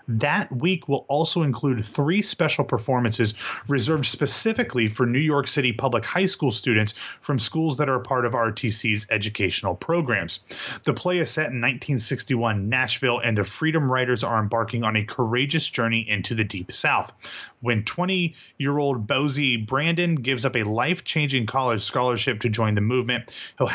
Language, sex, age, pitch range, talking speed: English, male, 30-49, 115-145 Hz, 160 wpm